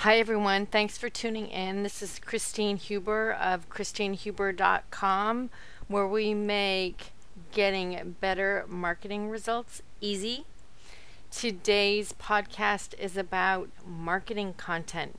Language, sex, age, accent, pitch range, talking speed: English, female, 40-59, American, 180-215 Hz, 105 wpm